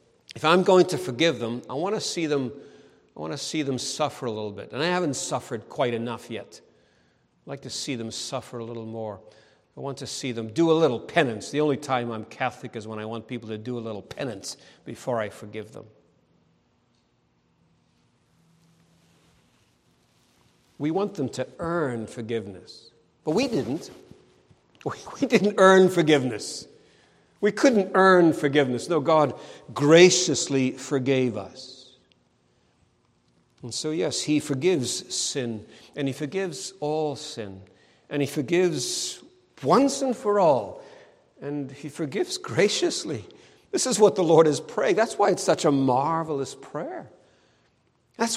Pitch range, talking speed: 115-175 Hz, 155 wpm